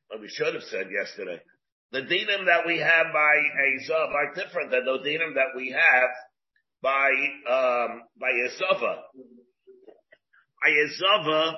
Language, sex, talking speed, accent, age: English, male, 135 wpm, American, 50-69